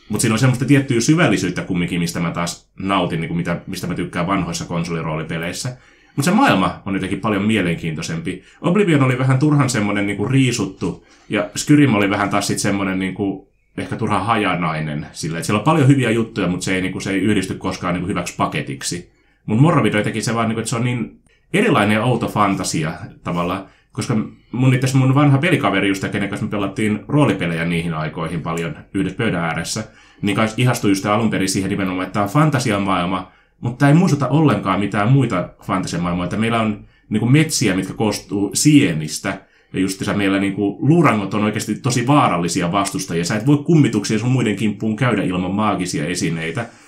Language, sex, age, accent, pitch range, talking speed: Finnish, male, 30-49, native, 95-130 Hz, 175 wpm